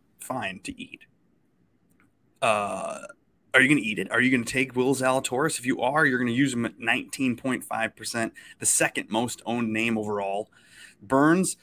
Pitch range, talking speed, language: 110-135 Hz, 175 wpm, English